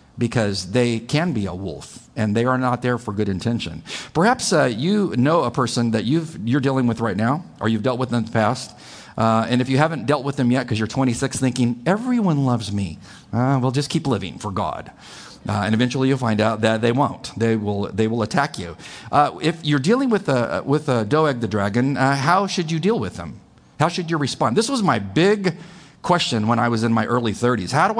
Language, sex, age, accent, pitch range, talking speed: English, male, 50-69, American, 110-150 Hz, 235 wpm